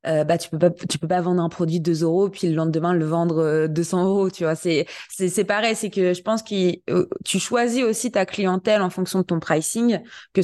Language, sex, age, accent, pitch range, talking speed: French, female, 20-39, French, 165-190 Hz, 235 wpm